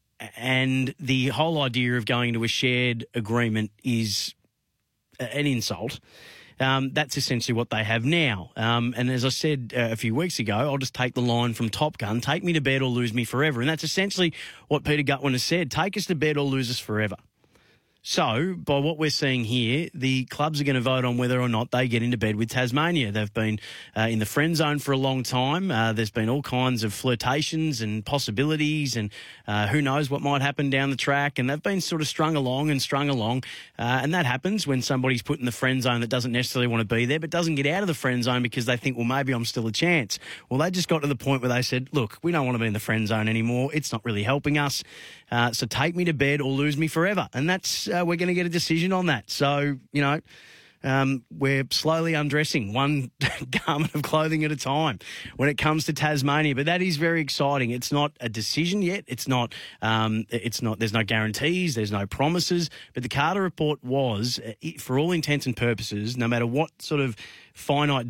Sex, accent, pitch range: male, Australian, 120-150 Hz